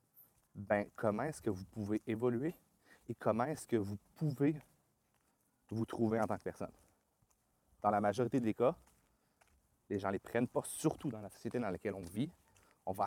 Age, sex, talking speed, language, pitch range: 30-49, male, 185 wpm, French, 100-120 Hz